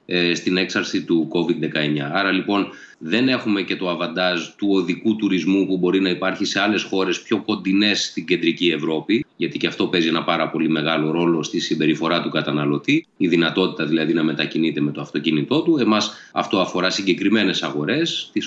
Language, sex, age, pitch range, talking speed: Greek, male, 30-49, 85-110 Hz, 175 wpm